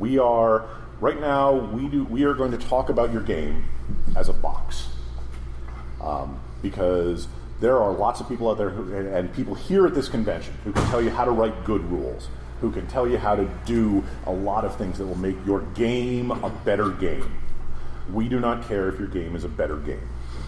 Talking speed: 210 wpm